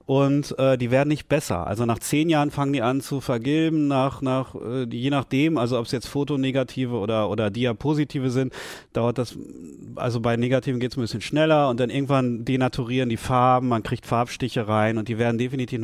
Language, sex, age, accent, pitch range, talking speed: German, male, 40-59, German, 120-140 Hz, 200 wpm